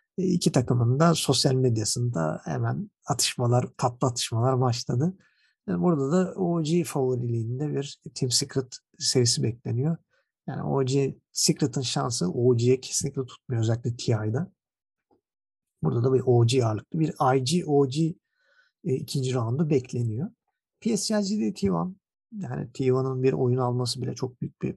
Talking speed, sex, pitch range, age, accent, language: 125 wpm, male, 125-160 Hz, 50-69, native, Turkish